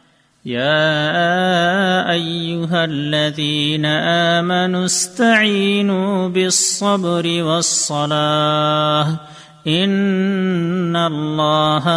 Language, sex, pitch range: Urdu, male, 145-185 Hz